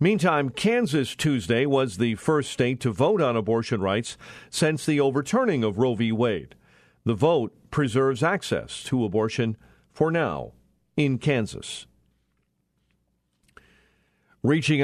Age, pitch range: 50-69, 130-165 Hz